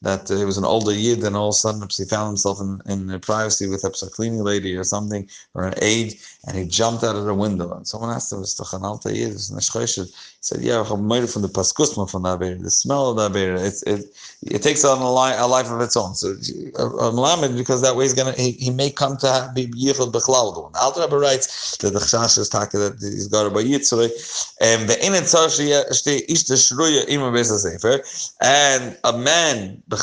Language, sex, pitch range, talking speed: English, male, 105-130 Hz, 195 wpm